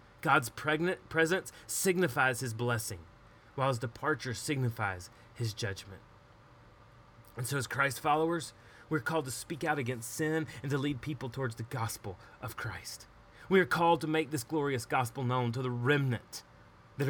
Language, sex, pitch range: English, male, 120-170 Hz